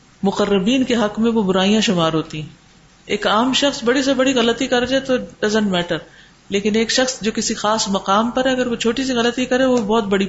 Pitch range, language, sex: 180-245 Hz, Urdu, female